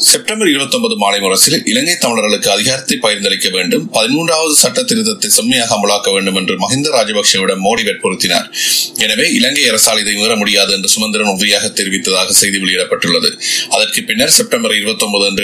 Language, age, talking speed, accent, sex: Tamil, 30-49, 140 wpm, native, male